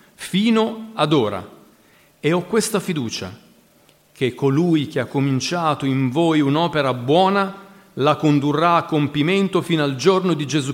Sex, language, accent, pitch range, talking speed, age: male, Italian, native, 140-180 Hz, 140 wpm, 40-59